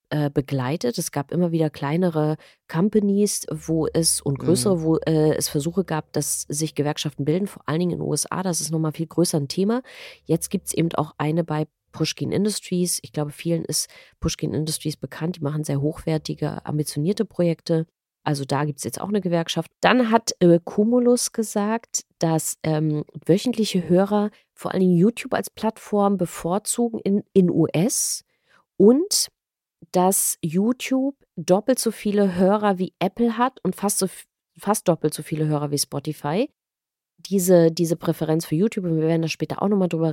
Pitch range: 155-195 Hz